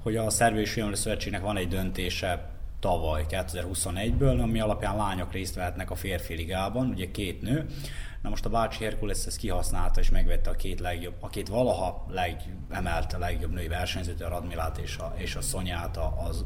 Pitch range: 90-115 Hz